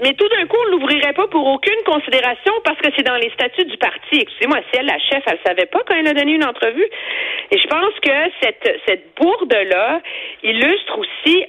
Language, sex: French, female